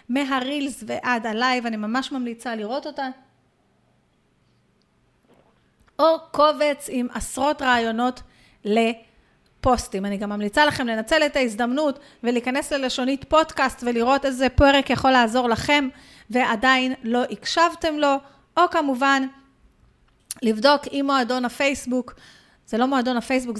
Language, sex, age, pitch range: Hebrew, female, 30-49, 230-280 Hz